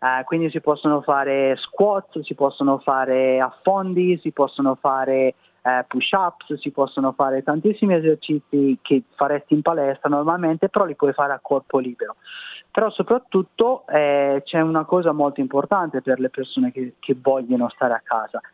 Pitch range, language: 130-165 Hz, Italian